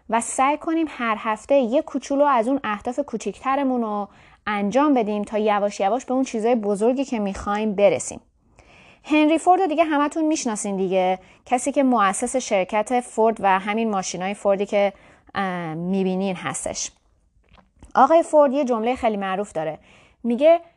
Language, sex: Persian, female